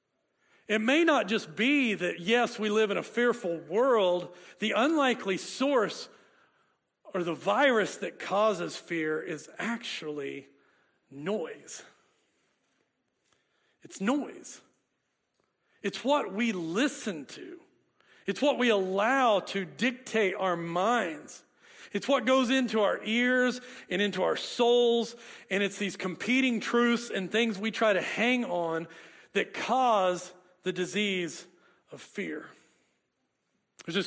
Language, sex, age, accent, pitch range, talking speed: English, male, 40-59, American, 180-230 Hz, 120 wpm